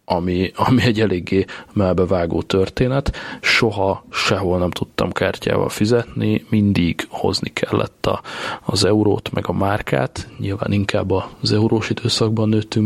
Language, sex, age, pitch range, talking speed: Hungarian, male, 30-49, 95-110 Hz, 125 wpm